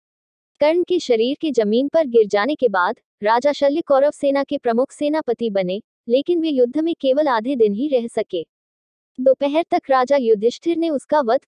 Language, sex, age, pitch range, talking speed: English, female, 20-39, 230-305 Hz, 185 wpm